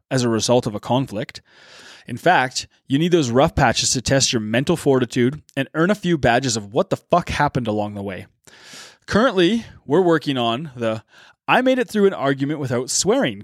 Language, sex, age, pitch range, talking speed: English, male, 20-39, 120-160 Hz, 195 wpm